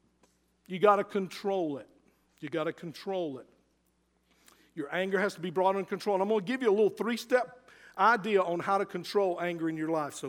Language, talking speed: English, 215 wpm